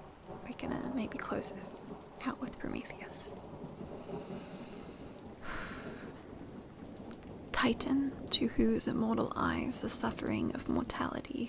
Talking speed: 85 wpm